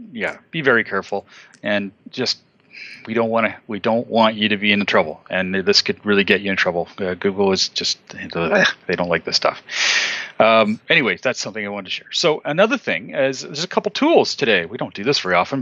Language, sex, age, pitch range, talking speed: English, male, 40-59, 105-145 Hz, 225 wpm